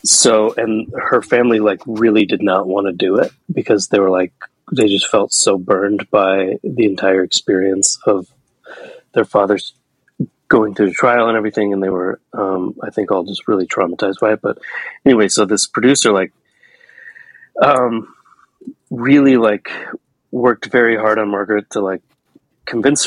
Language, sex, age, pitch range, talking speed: English, male, 30-49, 105-130 Hz, 165 wpm